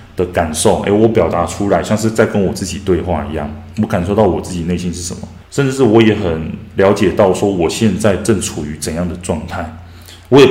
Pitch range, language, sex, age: 90-110 Hz, Chinese, male, 20-39